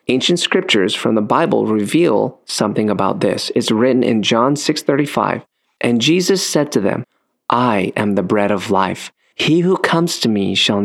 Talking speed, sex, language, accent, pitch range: 170 wpm, male, English, American, 110-155 Hz